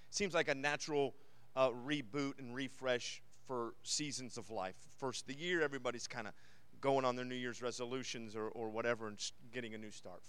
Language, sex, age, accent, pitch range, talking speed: English, male, 40-59, American, 115-145 Hz, 185 wpm